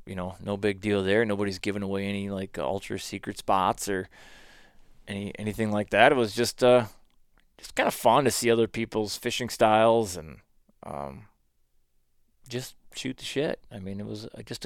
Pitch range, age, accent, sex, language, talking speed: 95-115 Hz, 20-39, American, male, English, 180 wpm